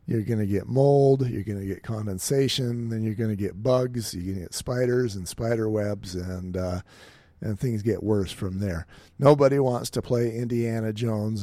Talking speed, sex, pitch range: 200 wpm, male, 105-125 Hz